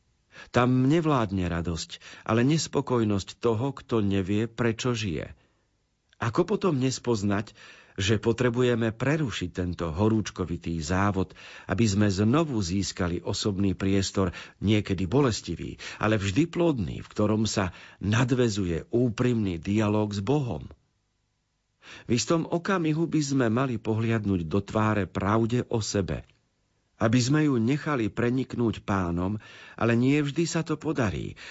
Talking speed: 120 wpm